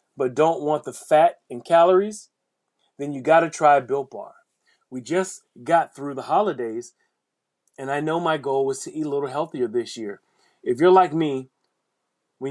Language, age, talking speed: English, 30-49, 175 wpm